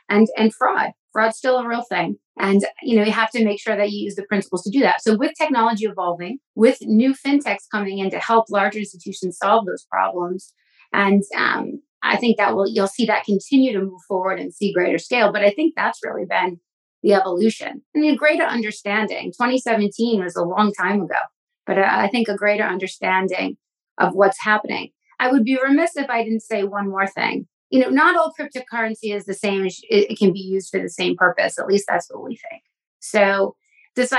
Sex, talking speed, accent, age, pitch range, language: female, 210 wpm, American, 30-49, 195-230 Hz, English